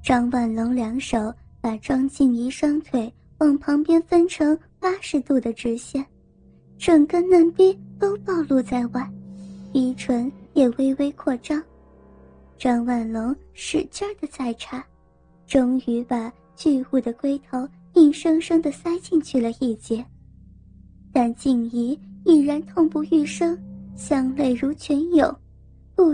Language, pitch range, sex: Chinese, 245-320 Hz, male